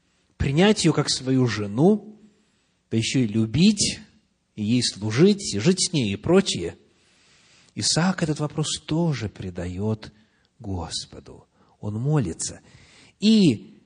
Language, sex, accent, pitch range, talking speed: Russian, male, native, 105-170 Hz, 115 wpm